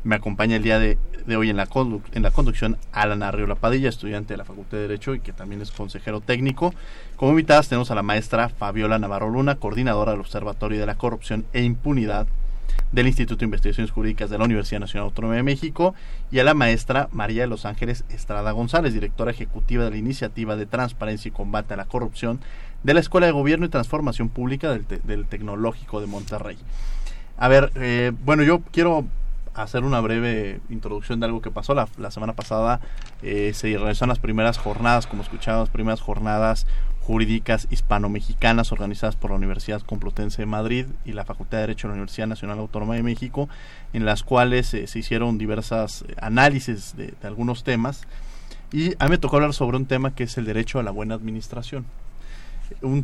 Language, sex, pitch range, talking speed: Spanish, male, 105-125 Hz, 190 wpm